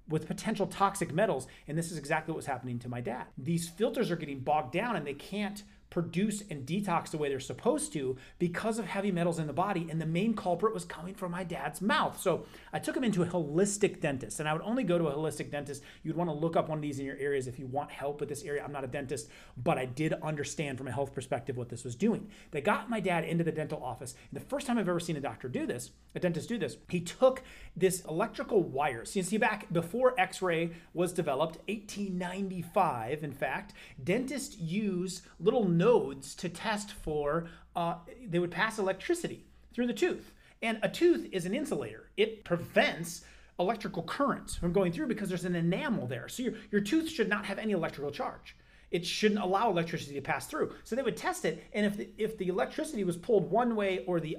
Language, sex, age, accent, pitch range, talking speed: English, male, 30-49, American, 155-210 Hz, 225 wpm